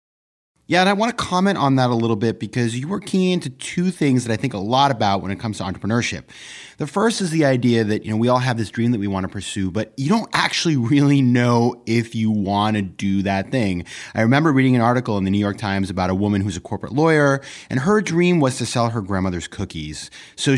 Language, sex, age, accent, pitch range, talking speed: English, male, 30-49, American, 100-145 Hz, 255 wpm